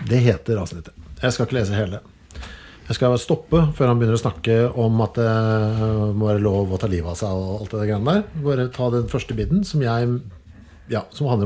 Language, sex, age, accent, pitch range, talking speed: English, male, 50-69, Norwegian, 110-150 Hz, 200 wpm